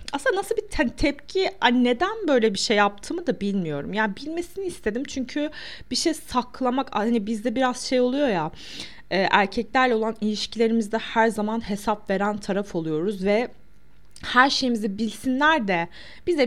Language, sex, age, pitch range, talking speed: Turkish, female, 30-49, 200-255 Hz, 155 wpm